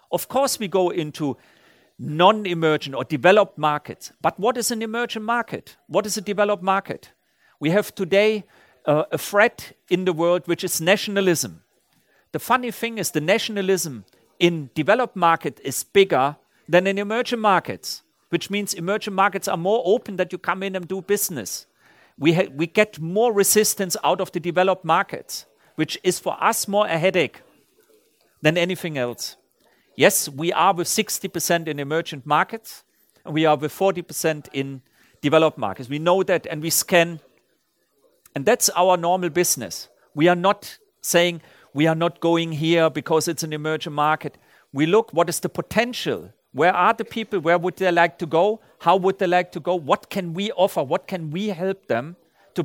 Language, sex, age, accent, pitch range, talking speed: Danish, male, 50-69, German, 160-200 Hz, 175 wpm